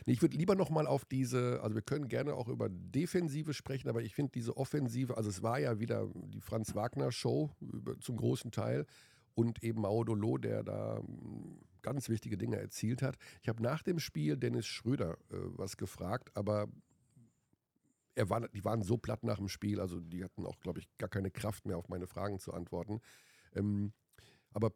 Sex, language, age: male, German, 50-69